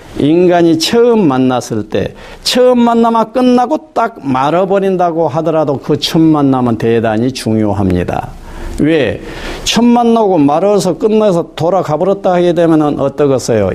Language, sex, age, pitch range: Korean, male, 50-69, 130-205 Hz